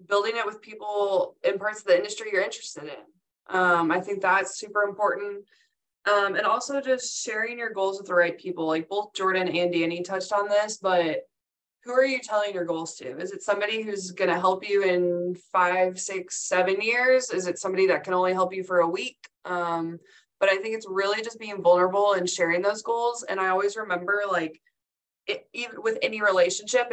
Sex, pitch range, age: female, 180-210 Hz, 20-39